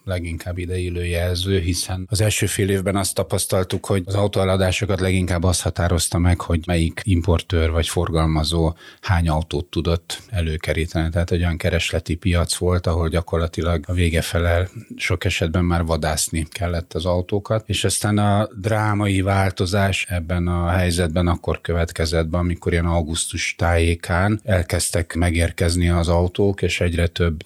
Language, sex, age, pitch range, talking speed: Hungarian, male, 40-59, 85-95 Hz, 145 wpm